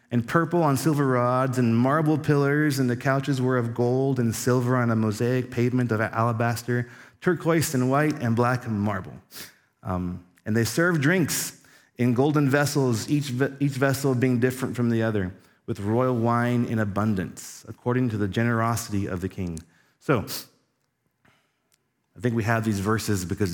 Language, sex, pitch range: English, male, 110-130 Hz